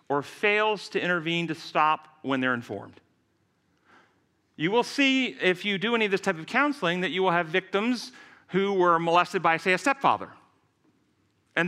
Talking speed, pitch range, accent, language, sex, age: 175 wpm, 135-185 Hz, American, English, male, 40-59